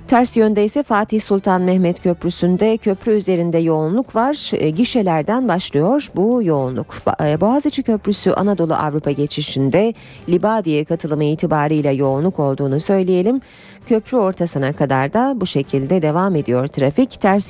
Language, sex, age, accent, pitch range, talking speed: Turkish, female, 40-59, native, 155-215 Hz, 125 wpm